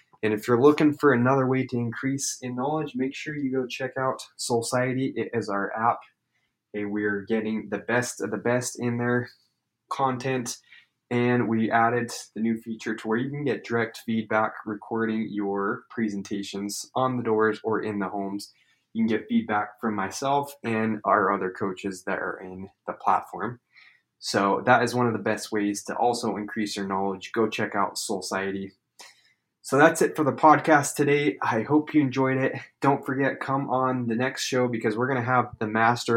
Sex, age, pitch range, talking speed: male, 20-39, 110-130 Hz, 190 wpm